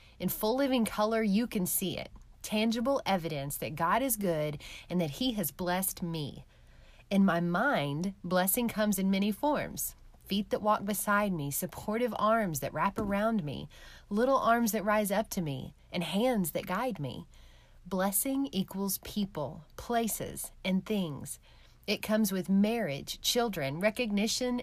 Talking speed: 155 wpm